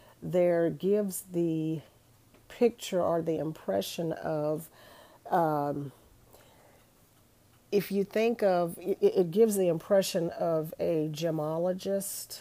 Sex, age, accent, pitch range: female, 40-59, American, 160-190 Hz